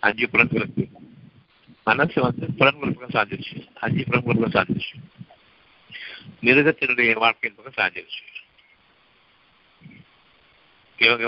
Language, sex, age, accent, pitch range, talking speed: Tamil, male, 60-79, native, 115-140 Hz, 75 wpm